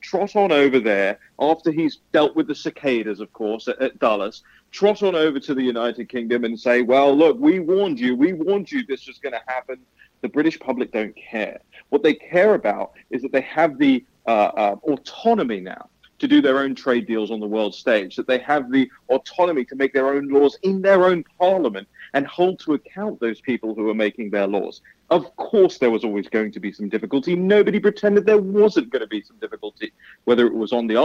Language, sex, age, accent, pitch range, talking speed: English, male, 40-59, British, 130-200 Hz, 220 wpm